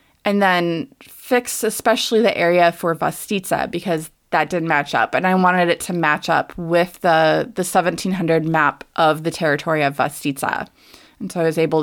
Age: 20-39